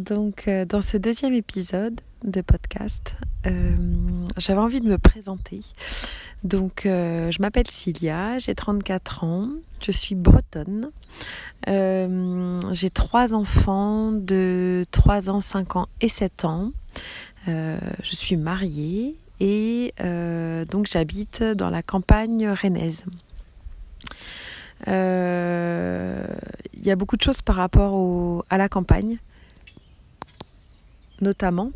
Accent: French